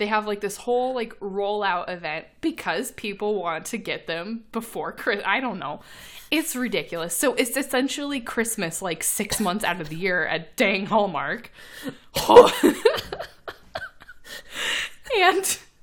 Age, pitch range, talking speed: 20-39, 180-230 Hz, 135 wpm